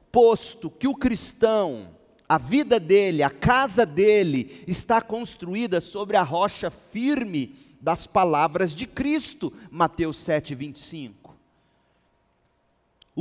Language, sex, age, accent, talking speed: Portuguese, male, 40-59, Brazilian, 100 wpm